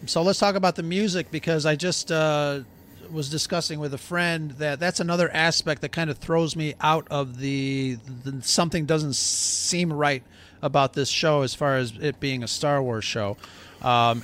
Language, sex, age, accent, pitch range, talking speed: English, male, 40-59, American, 140-175 Hz, 190 wpm